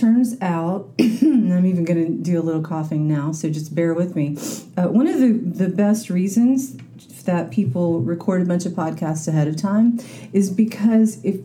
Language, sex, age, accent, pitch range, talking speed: English, female, 40-59, American, 165-215 Hz, 195 wpm